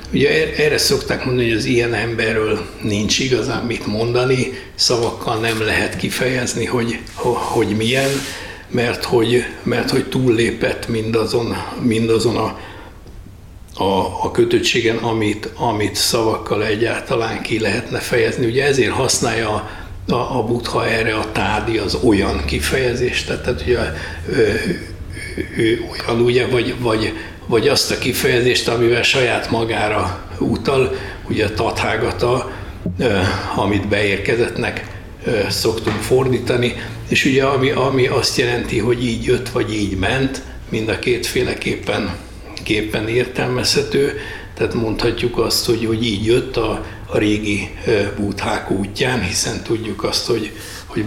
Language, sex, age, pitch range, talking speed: Hungarian, male, 60-79, 105-120 Hz, 120 wpm